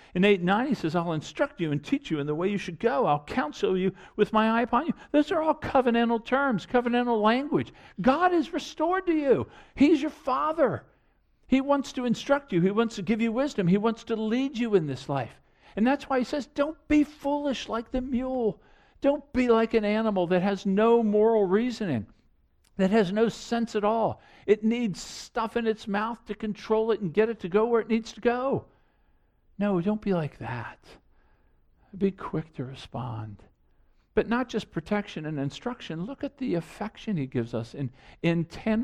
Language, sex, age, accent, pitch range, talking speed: English, male, 50-69, American, 170-235 Hz, 200 wpm